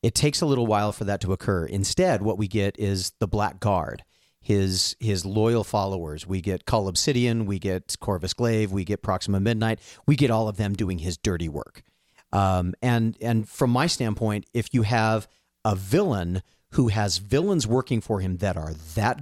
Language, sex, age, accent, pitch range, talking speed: English, male, 40-59, American, 95-115 Hz, 195 wpm